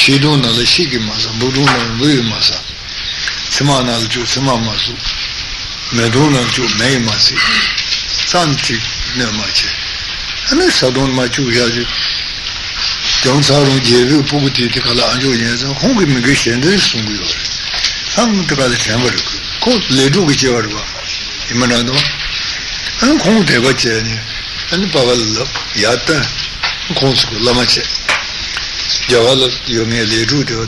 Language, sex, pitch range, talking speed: Italian, male, 115-140 Hz, 115 wpm